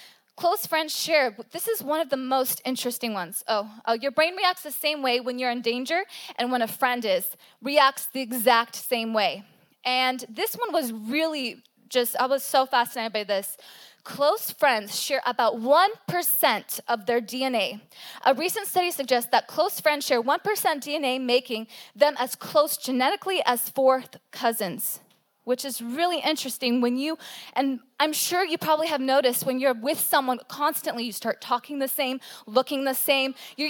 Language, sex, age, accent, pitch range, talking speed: English, female, 20-39, American, 245-320 Hz, 175 wpm